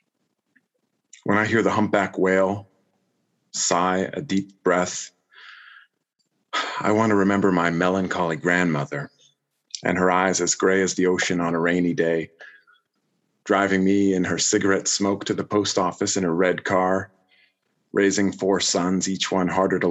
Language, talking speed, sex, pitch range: English, 150 wpm, male, 90-100 Hz